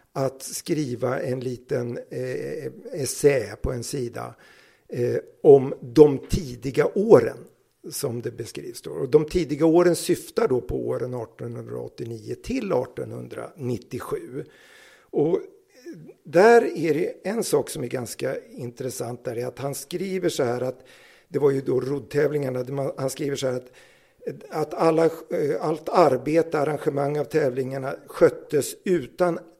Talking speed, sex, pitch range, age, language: 135 wpm, male, 135-215 Hz, 60-79, Swedish